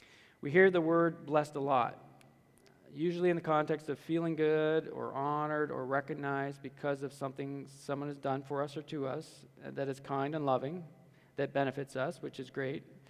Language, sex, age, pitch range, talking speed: English, male, 40-59, 135-155 Hz, 185 wpm